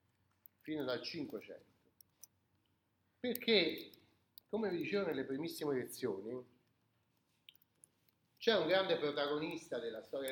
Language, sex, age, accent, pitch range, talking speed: Italian, male, 40-59, native, 130-220 Hz, 95 wpm